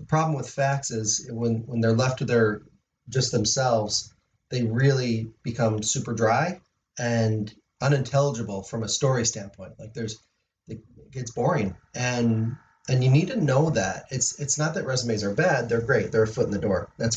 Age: 30-49